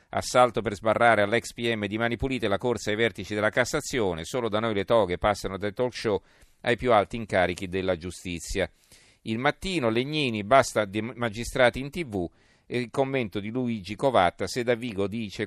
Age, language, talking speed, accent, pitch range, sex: 40-59, Italian, 175 wpm, native, 95-120 Hz, male